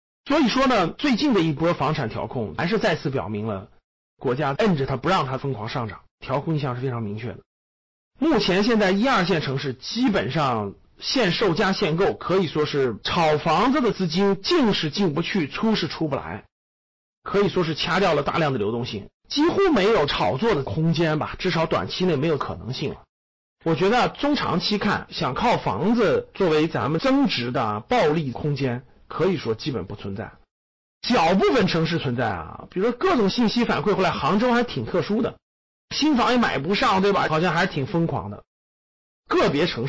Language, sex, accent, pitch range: Chinese, male, native, 130-210 Hz